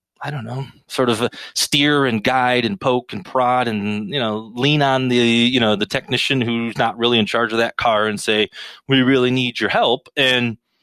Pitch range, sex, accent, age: 100-130 Hz, male, American, 30-49